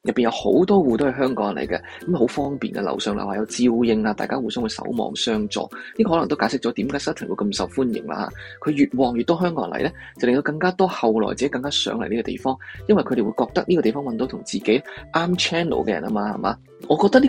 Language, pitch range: Chinese, 135-205 Hz